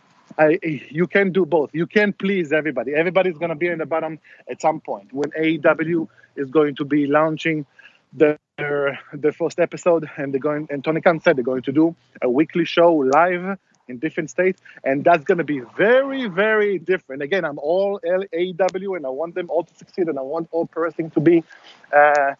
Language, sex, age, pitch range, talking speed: English, male, 50-69, 150-190 Hz, 200 wpm